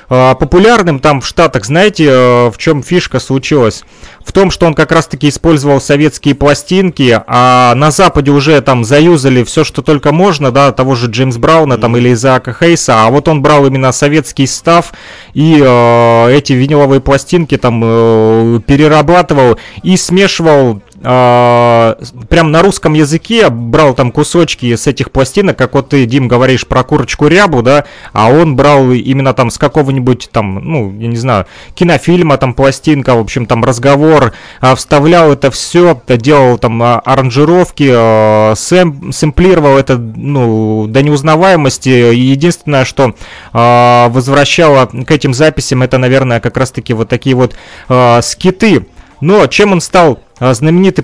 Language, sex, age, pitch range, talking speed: Russian, male, 30-49, 125-155 Hz, 140 wpm